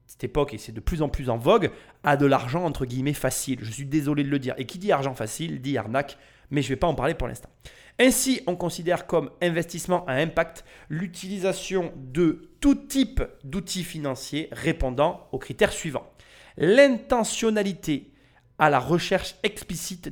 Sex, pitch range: male, 130-180 Hz